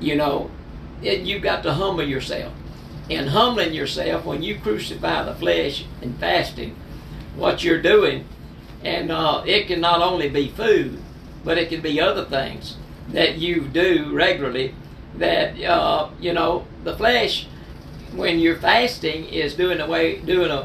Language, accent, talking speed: English, American, 150 wpm